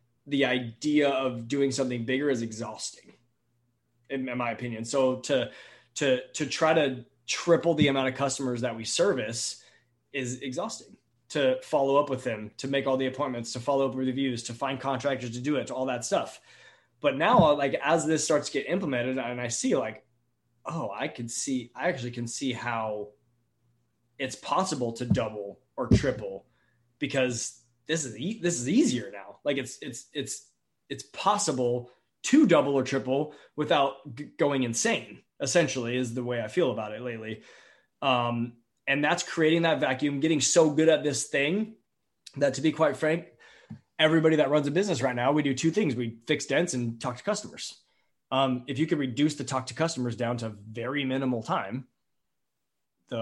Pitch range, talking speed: 120-145 Hz, 180 wpm